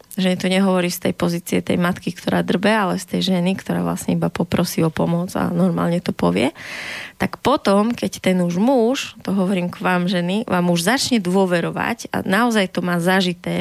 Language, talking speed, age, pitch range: Slovak, 195 wpm, 20-39, 180-200 Hz